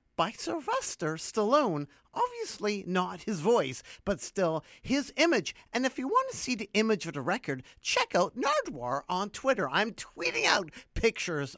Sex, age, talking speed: male, 50-69, 160 wpm